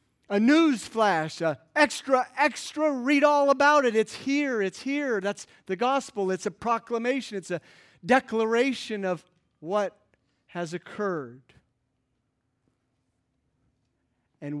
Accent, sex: American, male